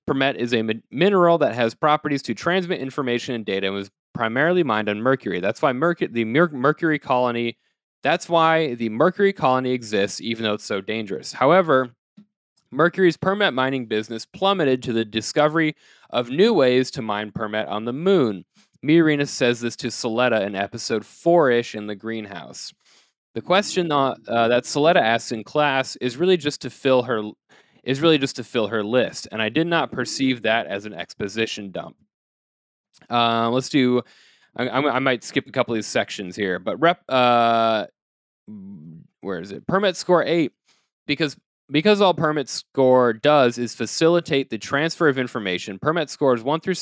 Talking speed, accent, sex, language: 175 wpm, American, male, English